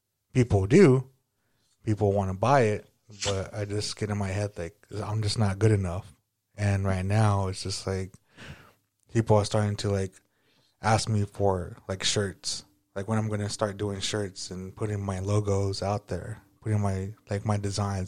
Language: English